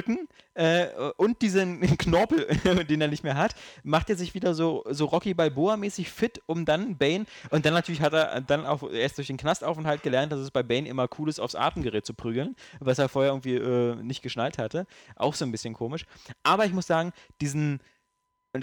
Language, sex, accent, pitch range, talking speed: German, male, German, 125-170 Hz, 205 wpm